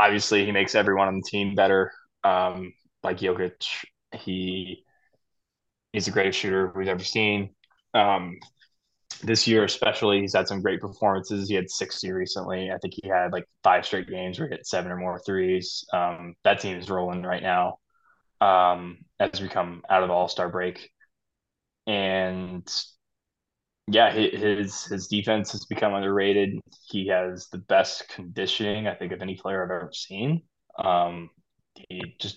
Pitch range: 90-100 Hz